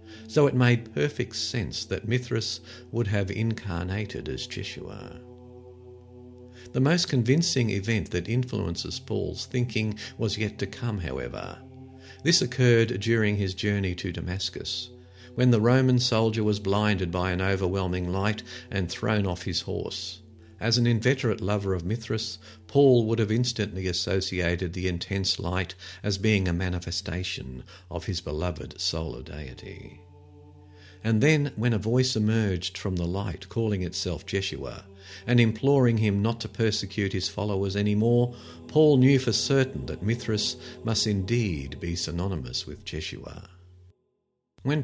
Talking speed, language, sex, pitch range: 140 wpm, English, male, 95-120 Hz